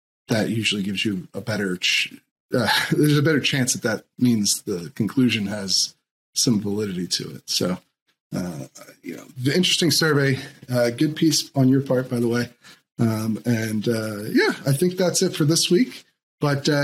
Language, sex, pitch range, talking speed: English, male, 120-160 Hz, 185 wpm